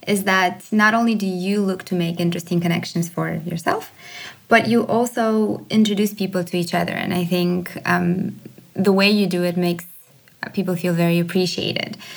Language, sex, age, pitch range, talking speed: English, female, 20-39, 175-200 Hz, 175 wpm